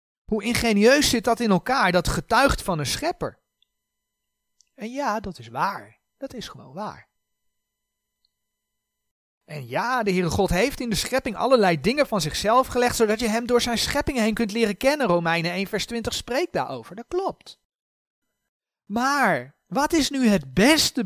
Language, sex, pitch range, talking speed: Dutch, male, 145-235 Hz, 165 wpm